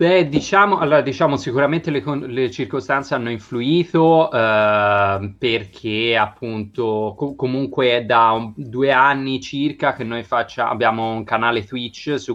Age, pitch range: 30-49, 115-145 Hz